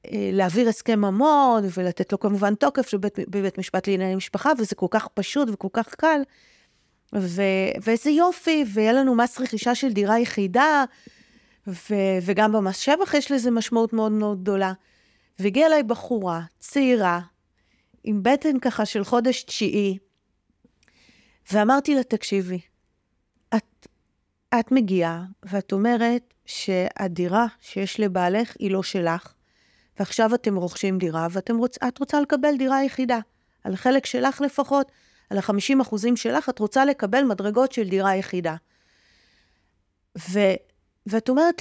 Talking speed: 130 wpm